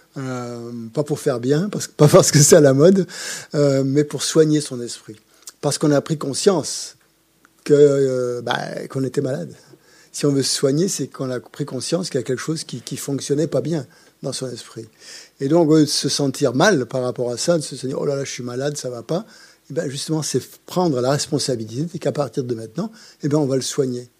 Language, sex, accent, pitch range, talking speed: French, male, French, 125-160 Hz, 225 wpm